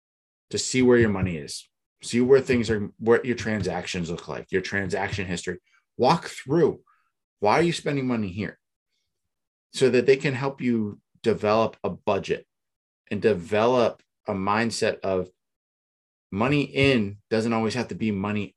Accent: American